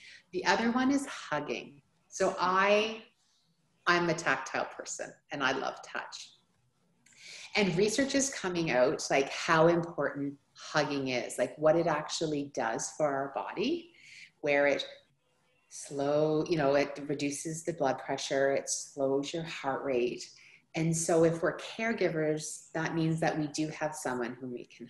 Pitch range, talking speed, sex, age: 150-180 Hz, 150 wpm, female, 30-49